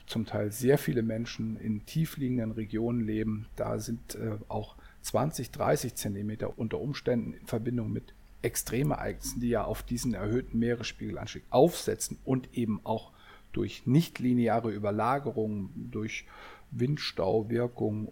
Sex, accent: male, German